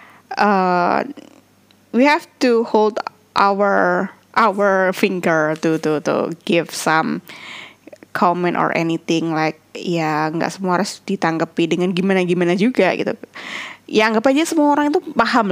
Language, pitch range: Indonesian, 170-225 Hz